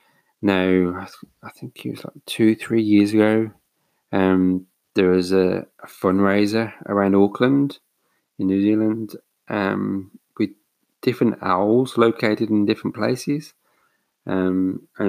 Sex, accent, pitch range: male, British, 90-105 Hz